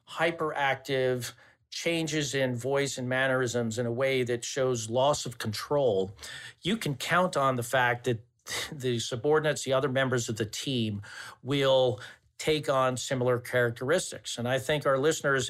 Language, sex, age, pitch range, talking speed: English, male, 50-69, 120-155 Hz, 150 wpm